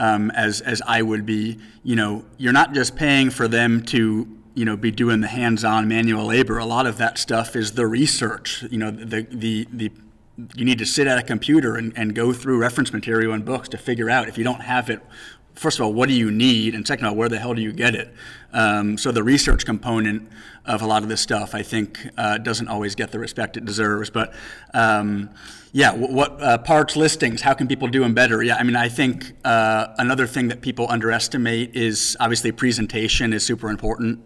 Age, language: 30-49, English